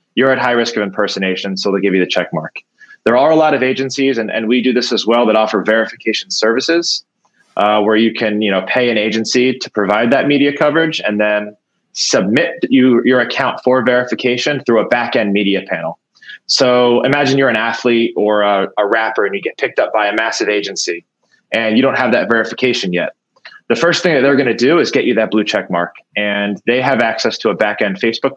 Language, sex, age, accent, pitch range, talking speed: English, male, 20-39, American, 100-120 Hz, 225 wpm